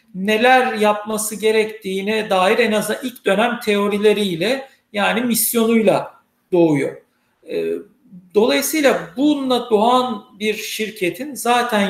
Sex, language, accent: male, Turkish, native